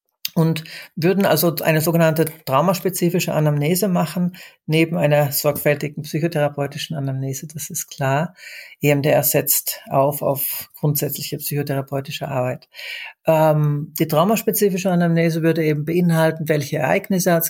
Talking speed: 115 wpm